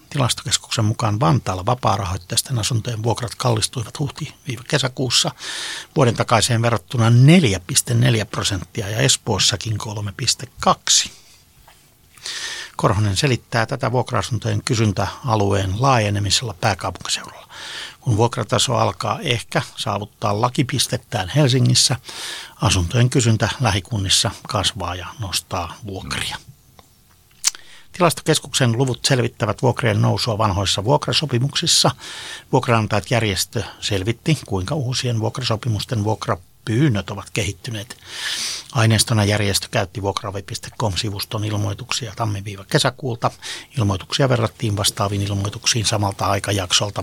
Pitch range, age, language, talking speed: 100-125 Hz, 60-79, Finnish, 85 wpm